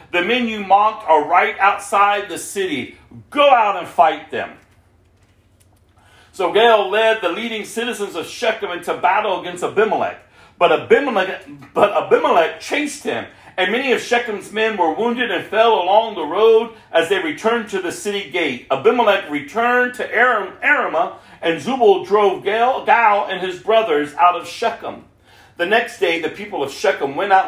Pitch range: 175-245 Hz